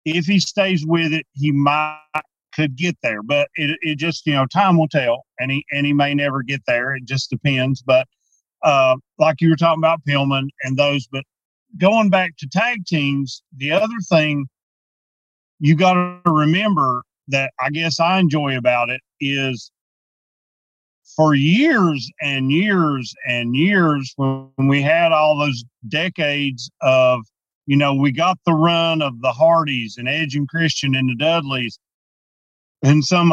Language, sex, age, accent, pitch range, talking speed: English, male, 40-59, American, 135-165 Hz, 165 wpm